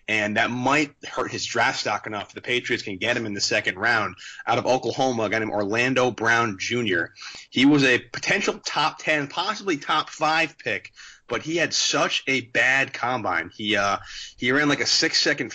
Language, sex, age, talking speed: English, male, 30-49, 195 wpm